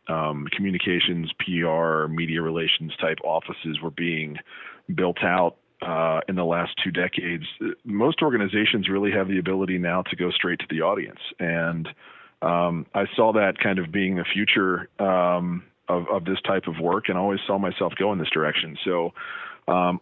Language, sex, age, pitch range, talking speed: English, male, 40-59, 85-95 Hz, 170 wpm